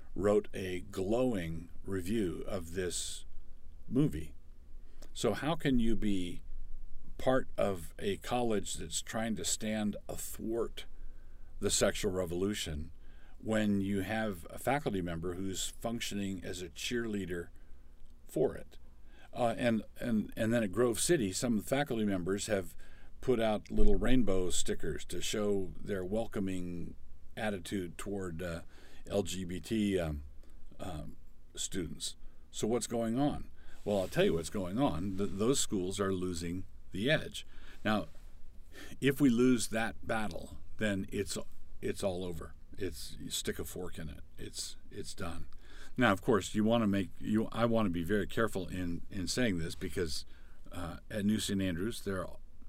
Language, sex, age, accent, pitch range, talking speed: English, male, 50-69, American, 80-105 Hz, 150 wpm